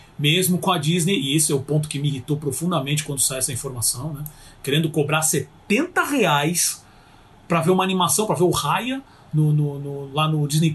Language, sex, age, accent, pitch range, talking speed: Portuguese, male, 40-59, Brazilian, 145-205 Hz, 195 wpm